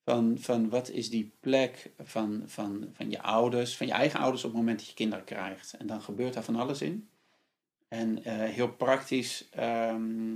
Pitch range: 105-125 Hz